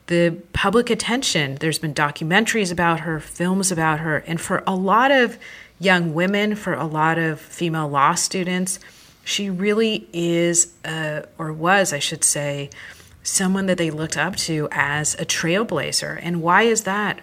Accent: American